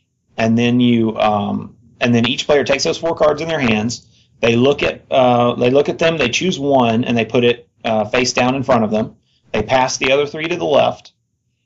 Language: English